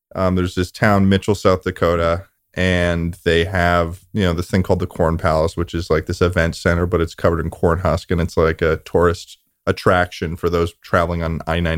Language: English